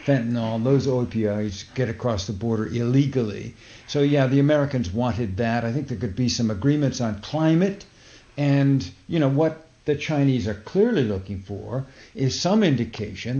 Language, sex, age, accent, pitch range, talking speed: English, male, 50-69, American, 115-145 Hz, 160 wpm